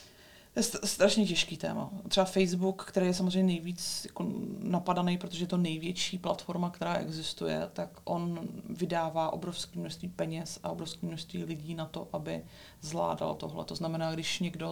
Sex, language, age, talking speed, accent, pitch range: female, Czech, 30-49, 160 wpm, native, 160-180 Hz